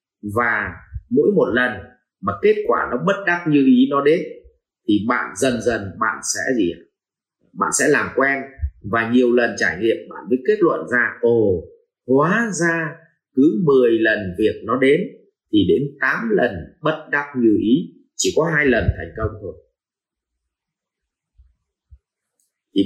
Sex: male